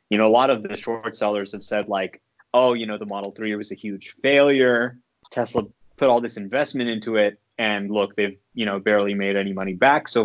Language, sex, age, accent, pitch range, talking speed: English, male, 20-39, American, 105-120 Hz, 230 wpm